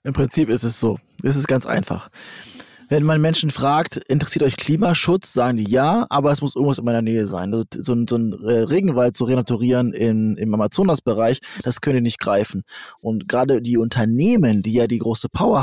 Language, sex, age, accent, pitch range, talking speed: German, male, 20-39, German, 115-140 Hz, 195 wpm